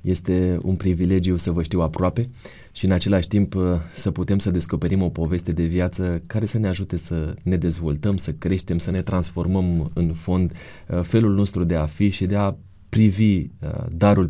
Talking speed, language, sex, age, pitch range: 180 wpm, Romanian, male, 30-49, 85-100 Hz